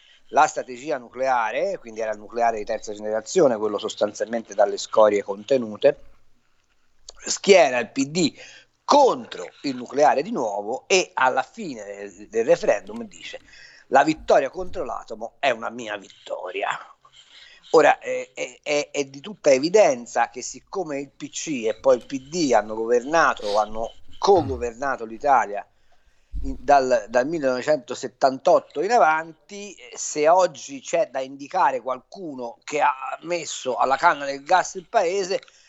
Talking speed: 130 wpm